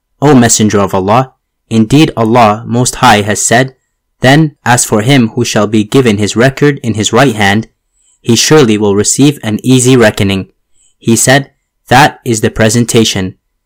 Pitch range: 105-130 Hz